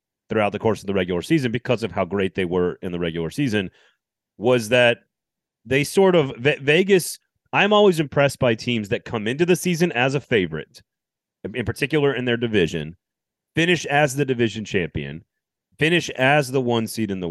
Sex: male